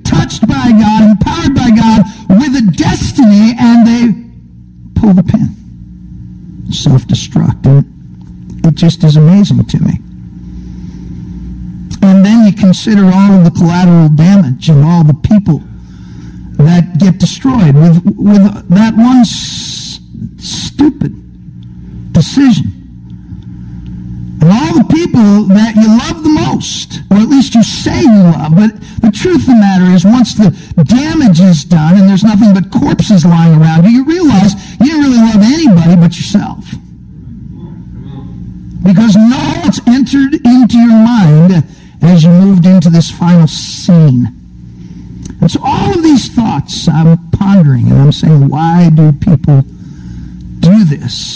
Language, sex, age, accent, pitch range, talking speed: English, male, 60-79, American, 125-215 Hz, 140 wpm